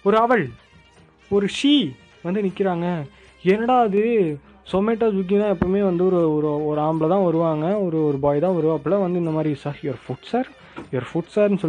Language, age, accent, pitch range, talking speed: Tamil, 20-39, native, 140-190 Hz, 175 wpm